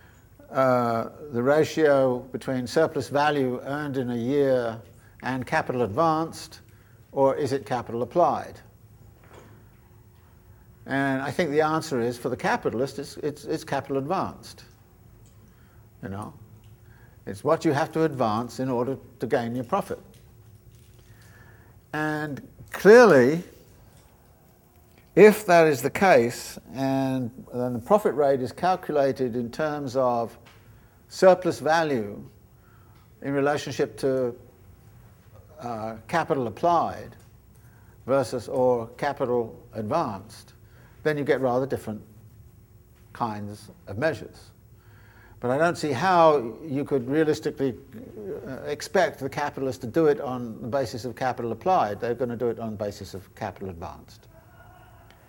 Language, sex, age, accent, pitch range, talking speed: English, male, 60-79, British, 110-140 Hz, 120 wpm